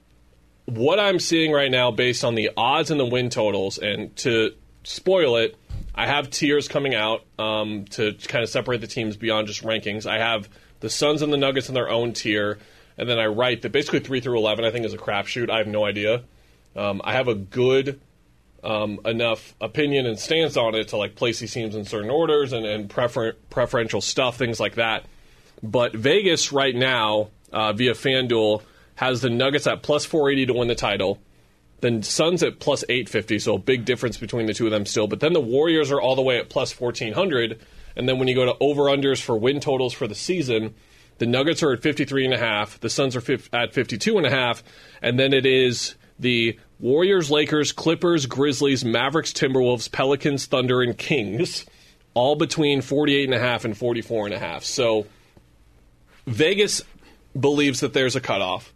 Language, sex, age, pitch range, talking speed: English, male, 30-49, 110-140 Hz, 190 wpm